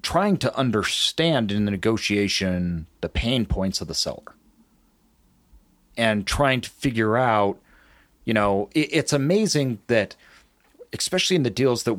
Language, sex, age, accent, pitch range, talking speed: English, male, 40-59, American, 100-135 Hz, 135 wpm